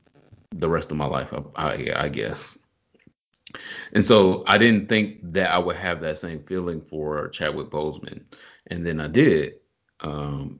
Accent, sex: American, male